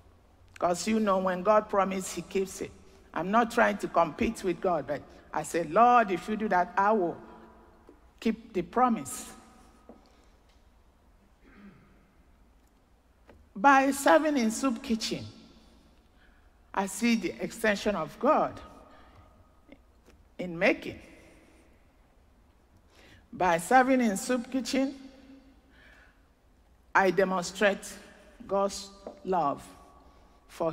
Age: 50-69